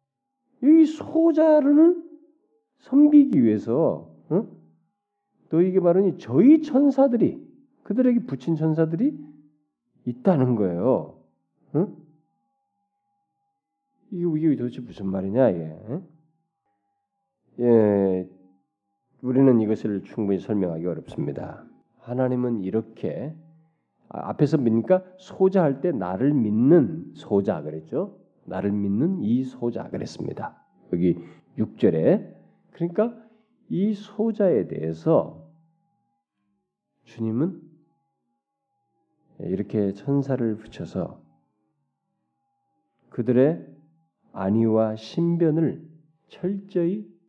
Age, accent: 40-59, native